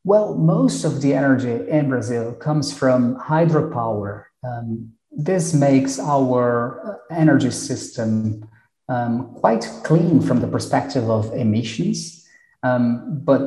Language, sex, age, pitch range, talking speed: English, male, 30-49, 115-140 Hz, 115 wpm